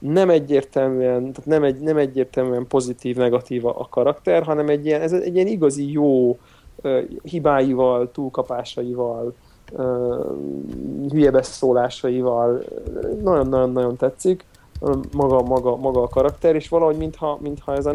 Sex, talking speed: male, 130 wpm